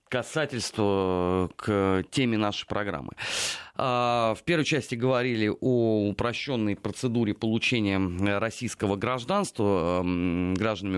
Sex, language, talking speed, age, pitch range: male, Russian, 85 wpm, 30-49, 105-135 Hz